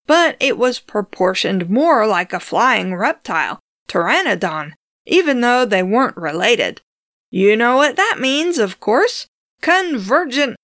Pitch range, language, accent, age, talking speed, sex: 195-295 Hz, English, American, 50-69, 130 wpm, female